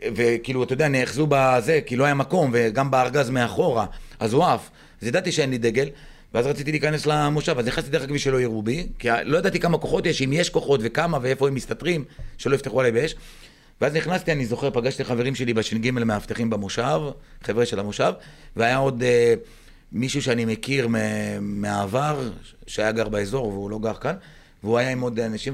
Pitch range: 110-145 Hz